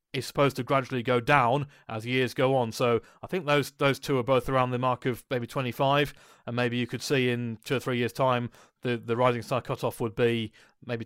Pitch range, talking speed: 120-145 Hz, 235 wpm